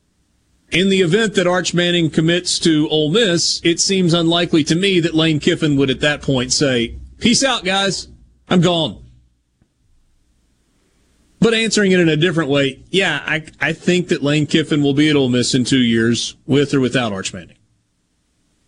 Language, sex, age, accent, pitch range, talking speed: English, male, 40-59, American, 110-170 Hz, 175 wpm